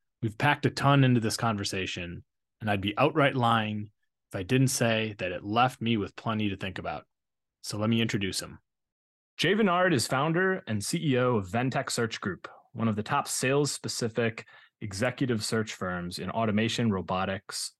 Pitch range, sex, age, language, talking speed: 100-125 Hz, male, 20-39, English, 170 wpm